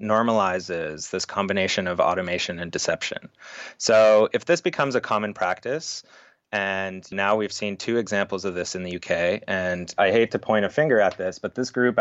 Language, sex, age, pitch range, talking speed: English, male, 30-49, 95-115 Hz, 185 wpm